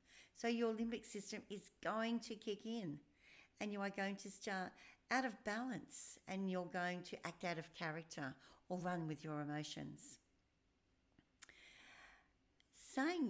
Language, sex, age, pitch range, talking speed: English, female, 60-79, 170-230 Hz, 145 wpm